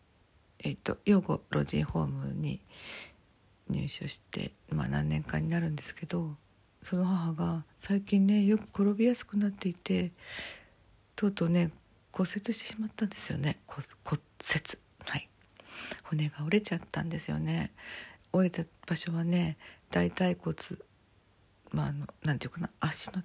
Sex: female